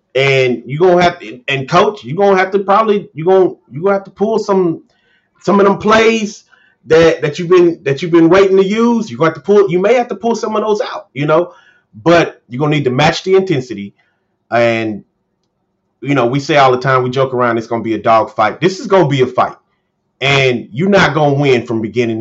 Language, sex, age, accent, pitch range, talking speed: English, male, 30-49, American, 120-175 Hz, 240 wpm